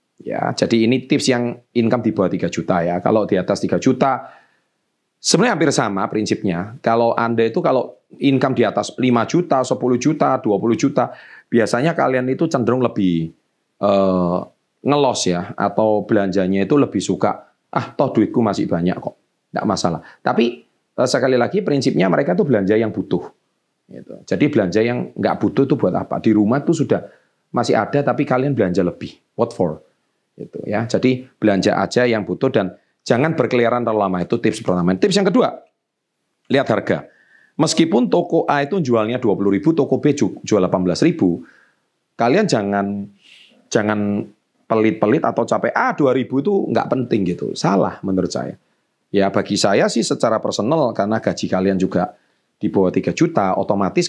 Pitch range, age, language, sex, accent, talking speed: 100-125 Hz, 30-49, Indonesian, male, native, 160 wpm